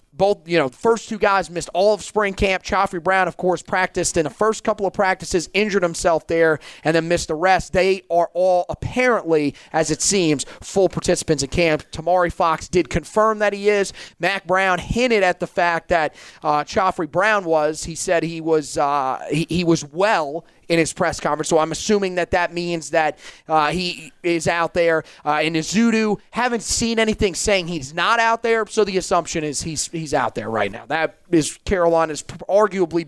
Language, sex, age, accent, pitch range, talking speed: English, male, 30-49, American, 160-200 Hz, 200 wpm